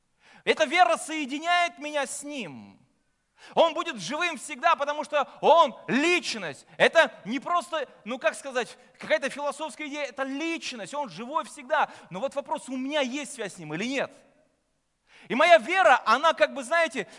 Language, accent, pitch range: Russian, native, 200-295 Hz